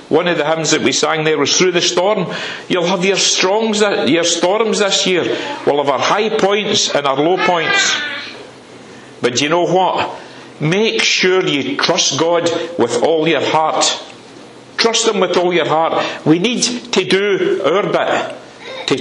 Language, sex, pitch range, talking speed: English, male, 160-225 Hz, 175 wpm